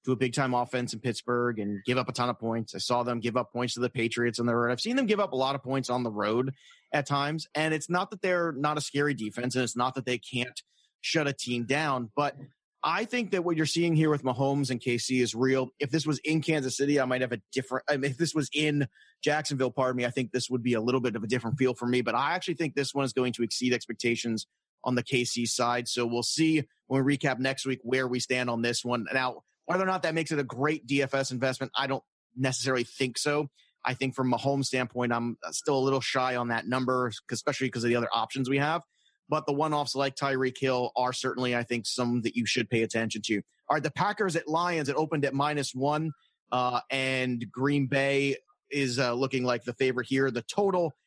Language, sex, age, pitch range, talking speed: English, male, 30-49, 125-150 Hz, 255 wpm